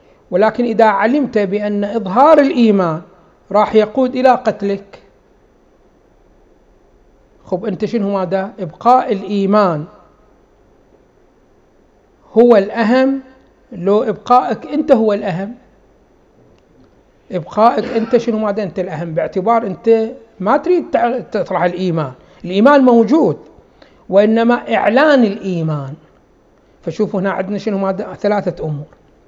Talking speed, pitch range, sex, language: 95 wpm, 190-245 Hz, male, Arabic